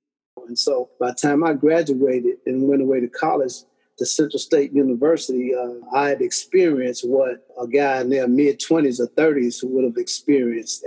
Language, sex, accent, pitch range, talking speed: English, male, American, 130-165 Hz, 170 wpm